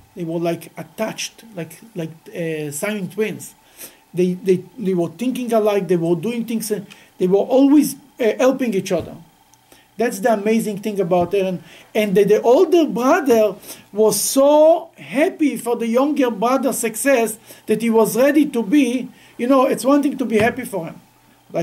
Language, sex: English, male